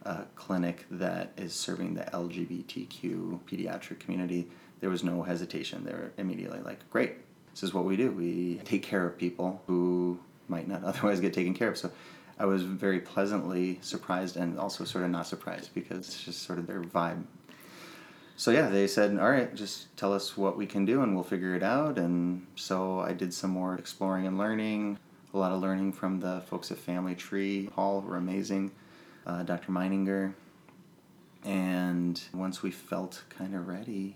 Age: 30-49